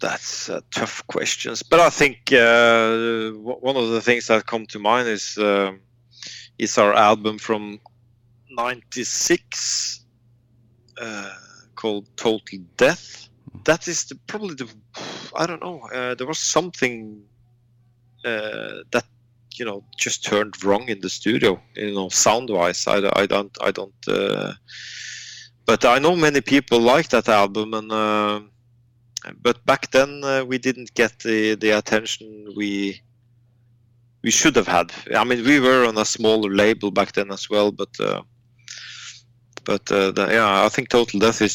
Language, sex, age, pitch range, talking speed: English, male, 30-49, 105-120 Hz, 155 wpm